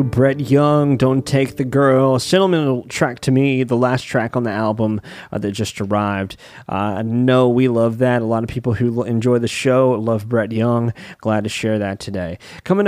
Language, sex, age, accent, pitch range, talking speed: English, male, 20-39, American, 110-130 Hz, 205 wpm